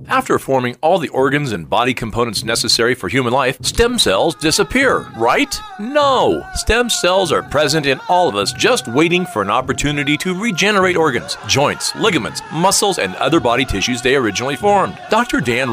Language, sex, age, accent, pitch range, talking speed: English, male, 50-69, American, 140-195 Hz, 170 wpm